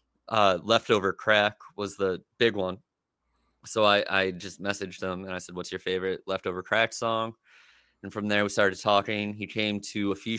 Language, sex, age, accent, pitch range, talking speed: English, male, 20-39, American, 95-110 Hz, 190 wpm